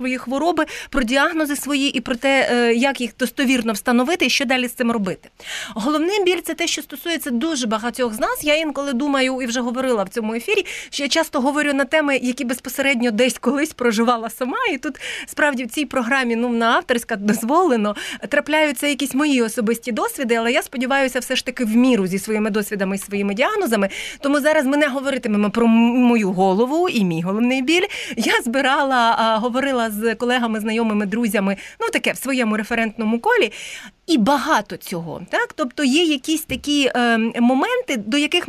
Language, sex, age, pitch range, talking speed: Ukrainian, female, 30-49, 230-300 Hz, 180 wpm